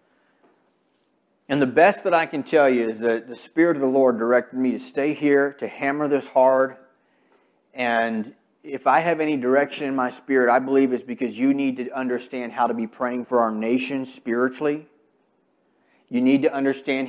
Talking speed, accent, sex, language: 185 wpm, American, male, English